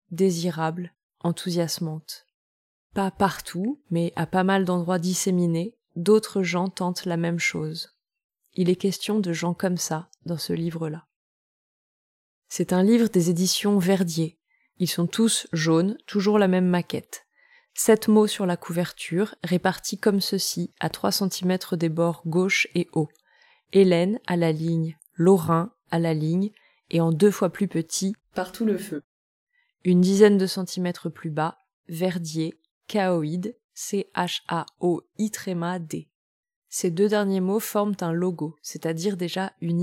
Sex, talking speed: female, 145 wpm